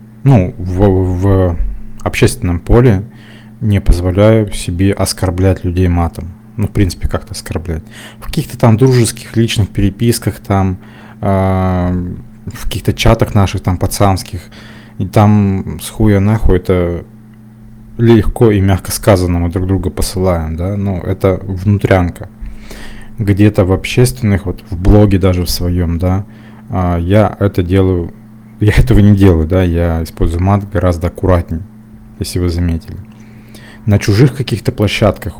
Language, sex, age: Russian, male, 20-39